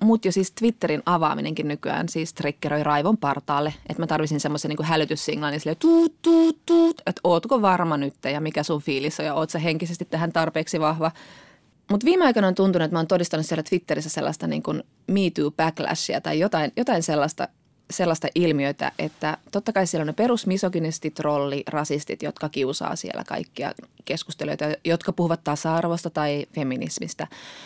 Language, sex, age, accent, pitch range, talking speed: Finnish, female, 20-39, native, 155-215 Hz, 165 wpm